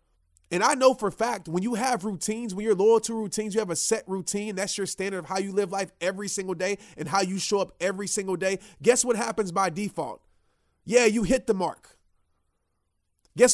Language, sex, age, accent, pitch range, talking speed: English, male, 30-49, American, 155-225 Hz, 220 wpm